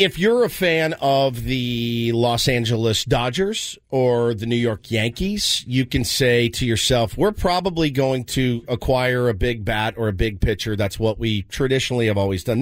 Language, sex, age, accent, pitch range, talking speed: English, male, 50-69, American, 115-155 Hz, 180 wpm